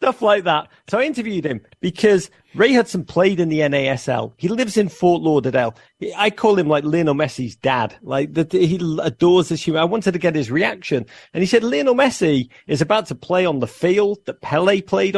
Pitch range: 140-185 Hz